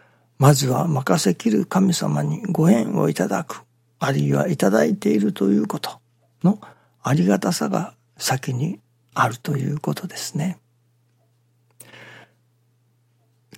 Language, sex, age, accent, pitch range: Japanese, male, 60-79, native, 120-145 Hz